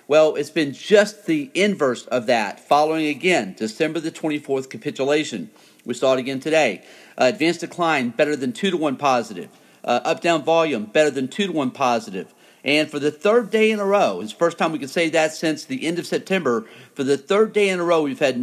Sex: male